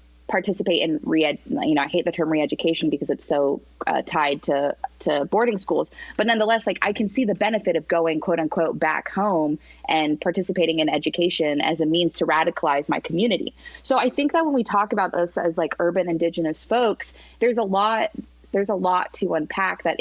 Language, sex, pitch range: English, female, 160-205 Hz